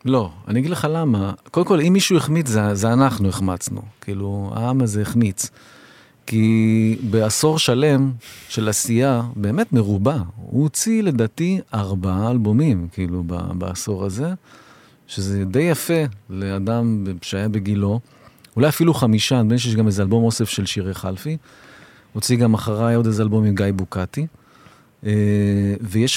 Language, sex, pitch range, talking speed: Hebrew, male, 105-145 Hz, 145 wpm